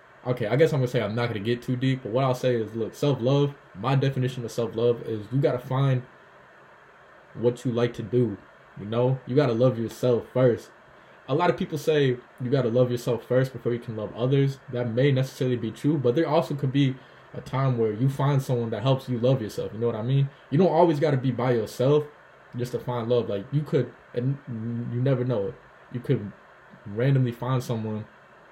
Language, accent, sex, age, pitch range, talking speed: English, American, male, 20-39, 115-130 Hz, 230 wpm